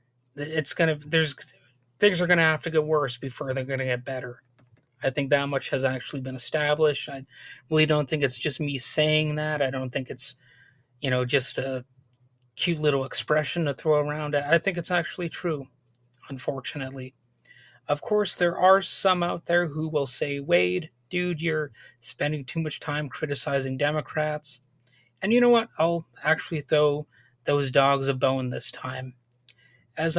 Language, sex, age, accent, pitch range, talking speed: English, male, 30-49, American, 130-155 Hz, 175 wpm